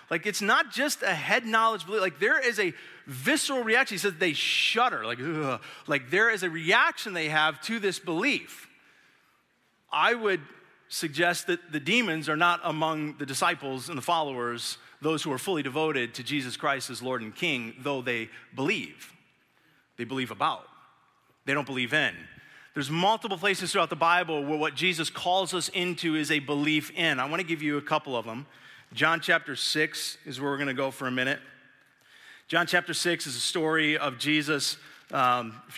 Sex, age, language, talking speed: male, 30-49, English, 190 wpm